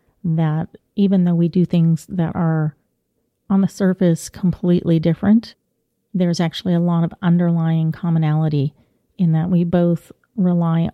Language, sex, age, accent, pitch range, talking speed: English, female, 40-59, American, 160-185 Hz, 135 wpm